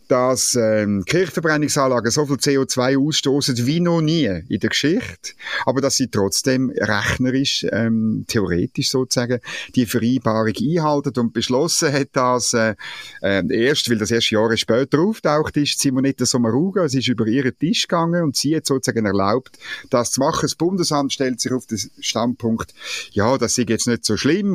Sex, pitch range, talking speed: male, 120-155 Hz, 170 wpm